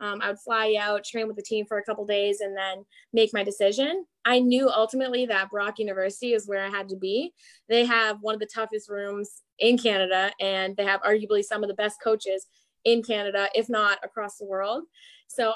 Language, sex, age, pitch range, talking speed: English, female, 20-39, 205-235 Hz, 220 wpm